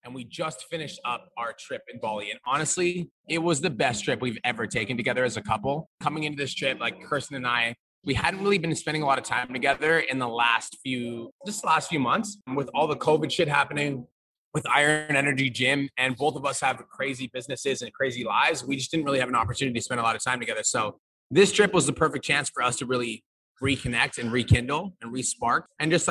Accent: American